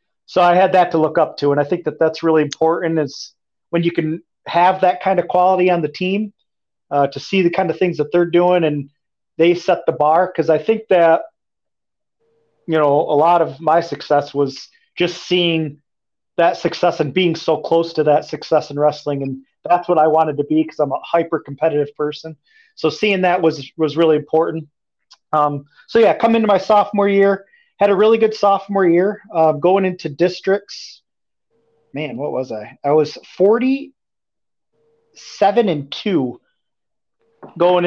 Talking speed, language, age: 180 wpm, English, 30-49